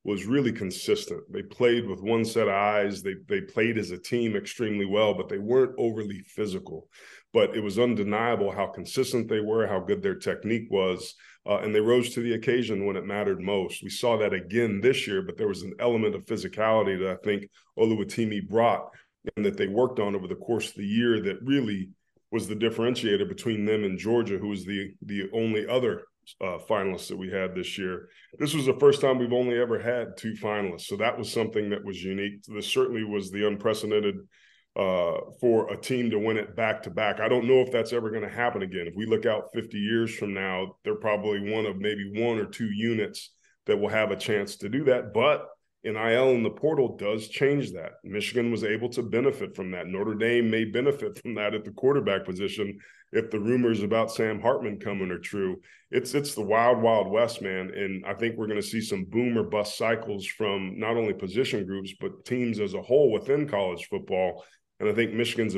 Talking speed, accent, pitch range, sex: 220 wpm, American, 100-120 Hz, male